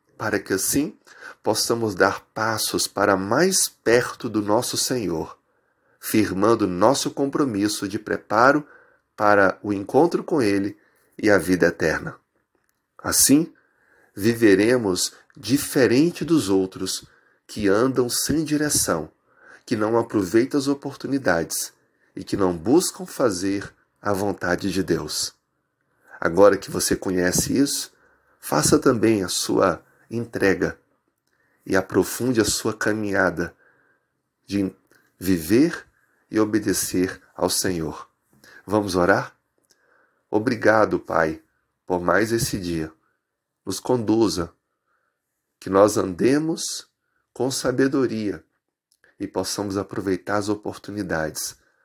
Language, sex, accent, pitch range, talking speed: Portuguese, male, Brazilian, 95-125 Hz, 105 wpm